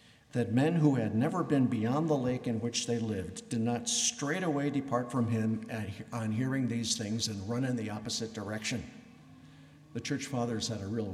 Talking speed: 195 wpm